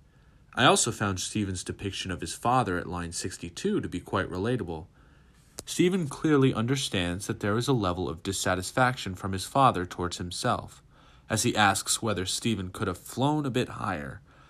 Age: 30-49